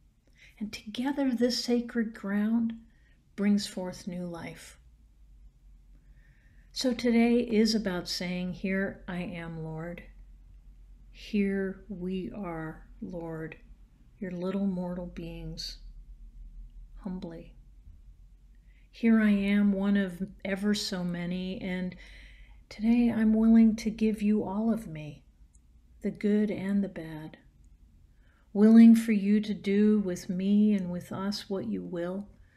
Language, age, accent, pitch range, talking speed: English, 50-69, American, 175-210 Hz, 115 wpm